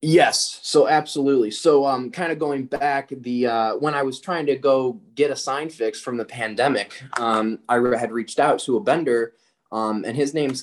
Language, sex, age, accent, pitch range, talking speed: English, male, 20-39, American, 105-130 Hz, 205 wpm